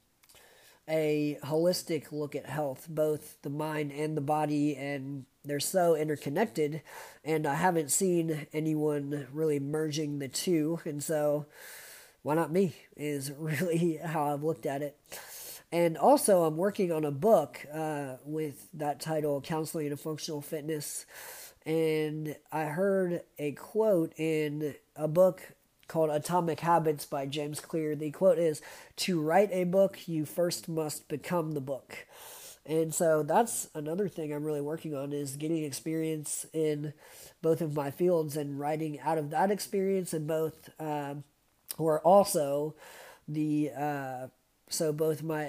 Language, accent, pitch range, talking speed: English, American, 145-165 Hz, 145 wpm